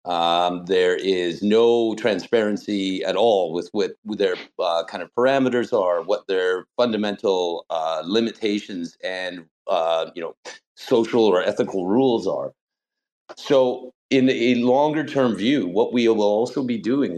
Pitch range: 90-125 Hz